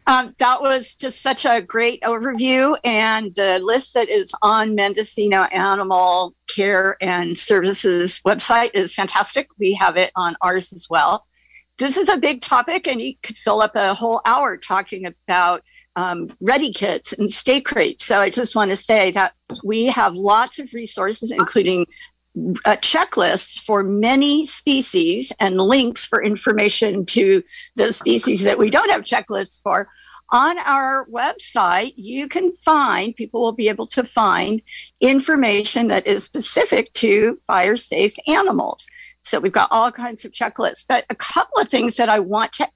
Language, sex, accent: English, female, American